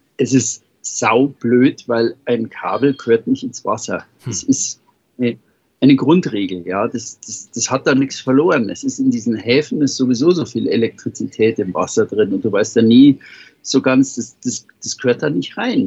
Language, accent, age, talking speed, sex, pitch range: German, German, 60-79, 185 wpm, male, 120-150 Hz